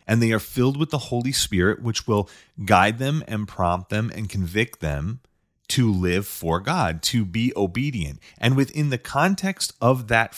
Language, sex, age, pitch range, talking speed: English, male, 30-49, 95-135 Hz, 180 wpm